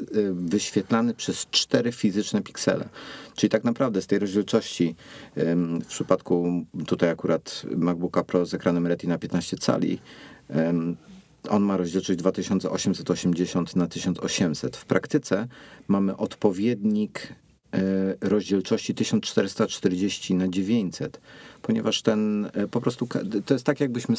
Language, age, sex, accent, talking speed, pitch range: Polish, 50-69, male, native, 110 wpm, 85-105 Hz